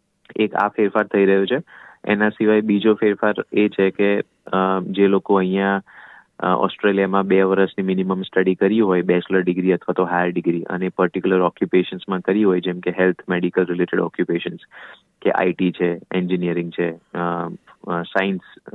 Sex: male